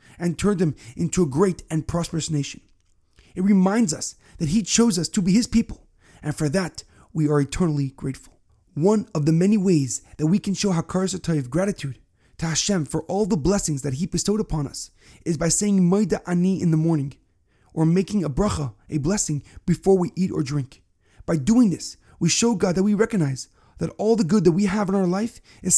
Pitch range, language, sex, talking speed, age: 150-195 Hz, English, male, 205 wpm, 30-49